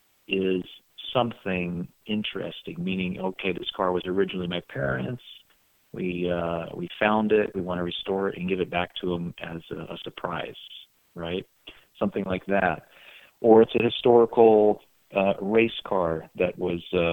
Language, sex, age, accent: English, male, 40-59, American